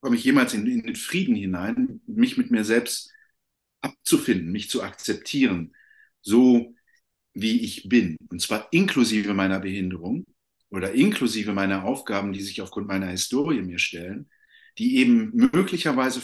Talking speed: 140 wpm